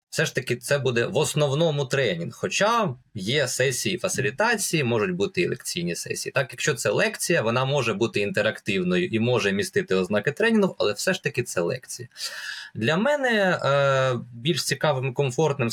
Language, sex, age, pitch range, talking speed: English, male, 20-39, 125-185 Hz, 160 wpm